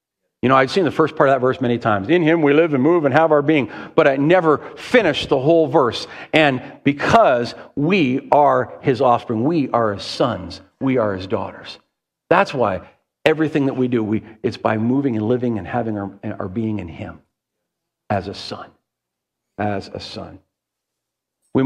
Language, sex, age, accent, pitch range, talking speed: English, male, 50-69, American, 120-160 Hz, 190 wpm